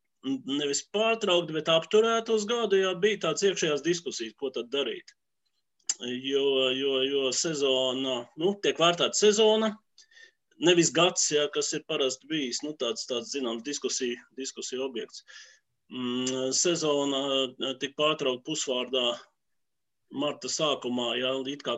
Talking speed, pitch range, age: 110 wpm, 130-195 Hz, 30-49